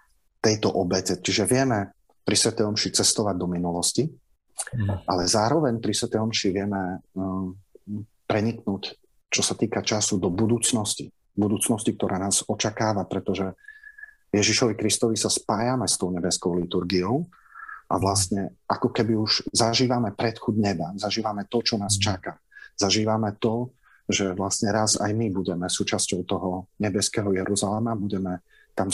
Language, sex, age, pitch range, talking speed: Slovak, male, 40-59, 95-115 Hz, 130 wpm